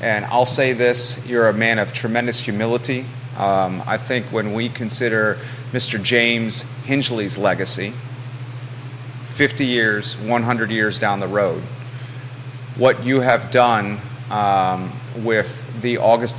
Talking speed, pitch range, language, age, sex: 130 wpm, 115-125 Hz, English, 30-49, male